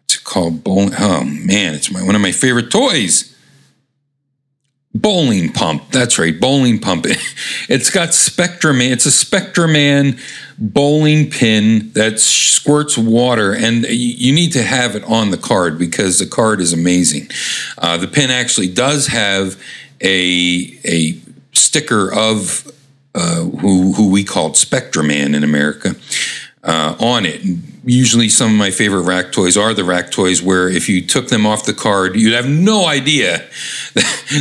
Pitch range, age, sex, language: 95-130 Hz, 50-69, male, English